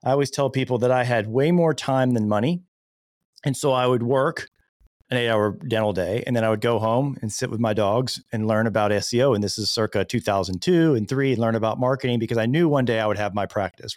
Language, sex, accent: English, male, American